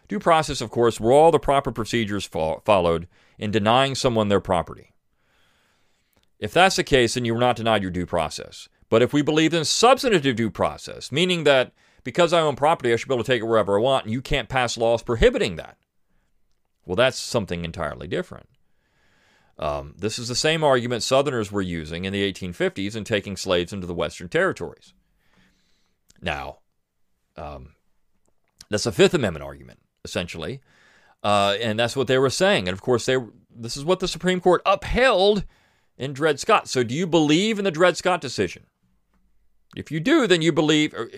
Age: 40-59